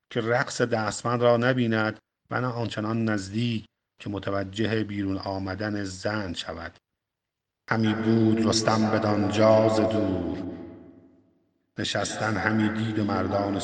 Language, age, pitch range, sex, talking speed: Persian, 50-69, 100-120 Hz, male, 110 wpm